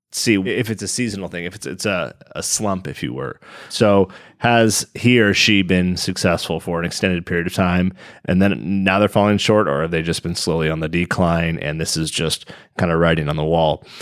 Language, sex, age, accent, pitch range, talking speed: English, male, 30-49, American, 85-100 Hz, 225 wpm